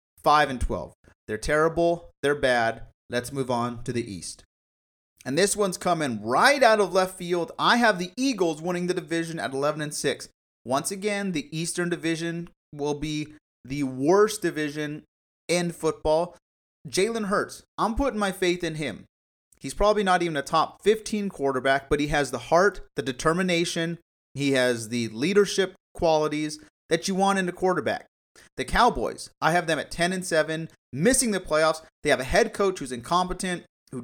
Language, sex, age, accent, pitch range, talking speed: English, male, 30-49, American, 140-185 Hz, 165 wpm